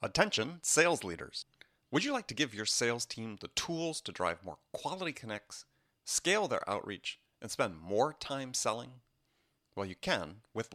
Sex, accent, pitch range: male, American, 95-120 Hz